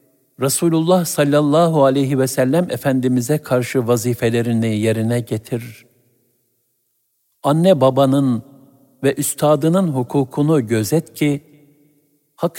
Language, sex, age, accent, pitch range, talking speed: Turkish, male, 60-79, native, 115-150 Hz, 85 wpm